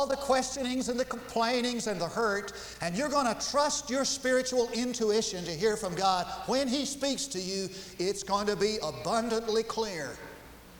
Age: 50-69